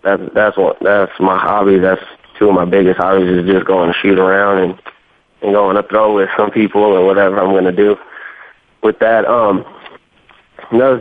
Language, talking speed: English, 190 wpm